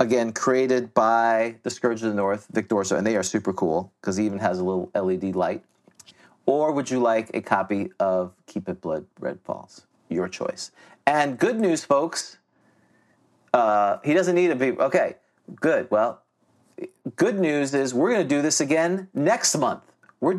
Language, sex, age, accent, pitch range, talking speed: English, male, 40-59, American, 105-160 Hz, 180 wpm